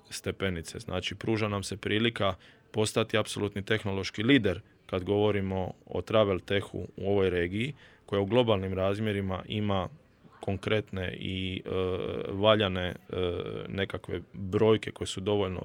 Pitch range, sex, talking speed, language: 95-110 Hz, male, 125 wpm, Croatian